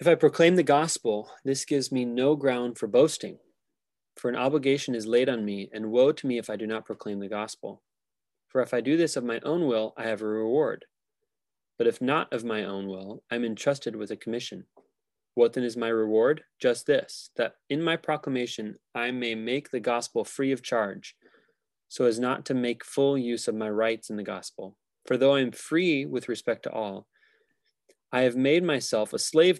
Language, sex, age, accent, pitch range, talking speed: English, male, 20-39, American, 115-135 Hz, 210 wpm